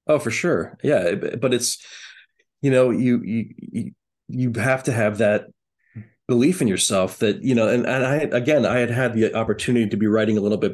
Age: 30-49